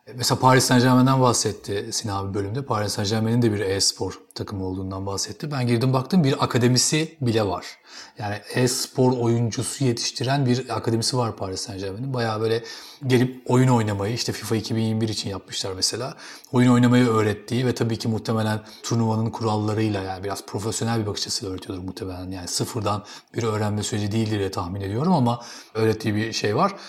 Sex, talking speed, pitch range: male, 160 wpm, 110-130 Hz